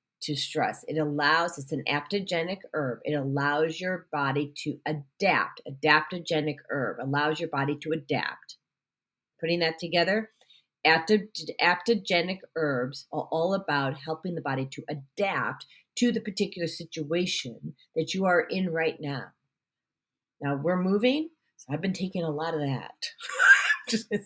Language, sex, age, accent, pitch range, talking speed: English, female, 40-59, American, 150-210 Hz, 140 wpm